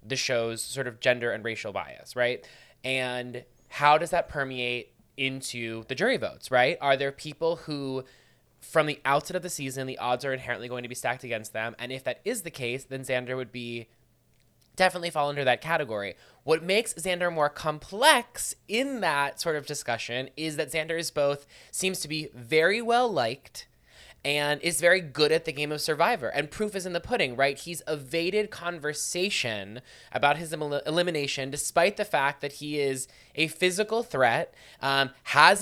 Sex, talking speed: male, 180 wpm